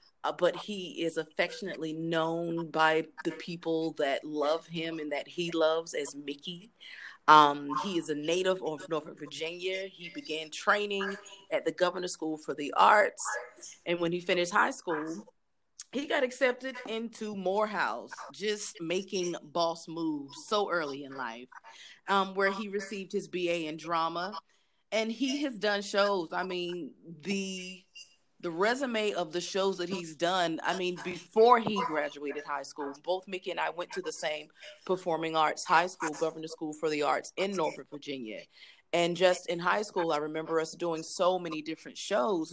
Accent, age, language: American, 30-49, English